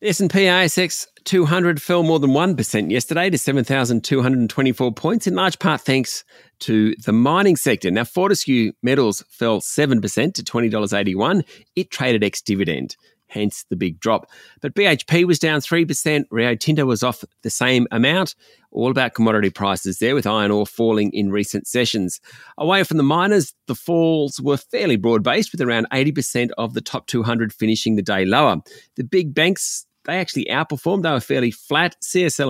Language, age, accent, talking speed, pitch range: English, 30-49, Australian, 175 wpm, 110-160 Hz